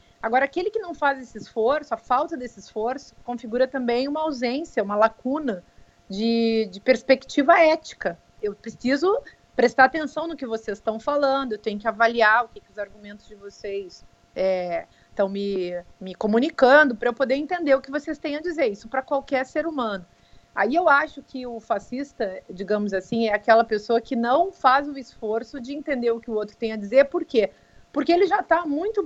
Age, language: 30-49, Portuguese